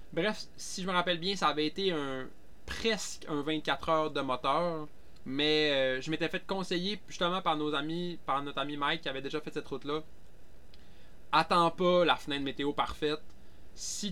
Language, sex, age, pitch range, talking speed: French, male, 20-39, 145-195 Hz, 180 wpm